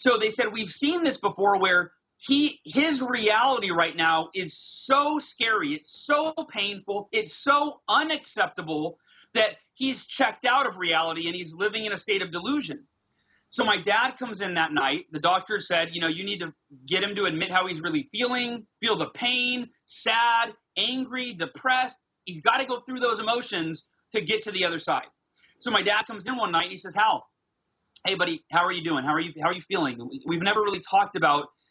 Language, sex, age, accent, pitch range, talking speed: English, male, 30-49, American, 170-240 Hz, 205 wpm